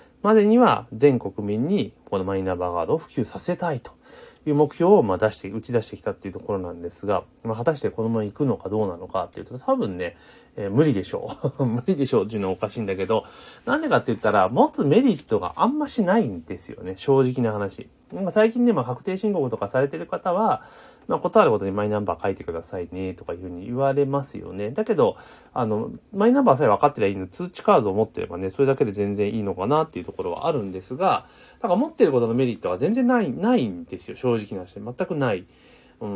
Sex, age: male, 30-49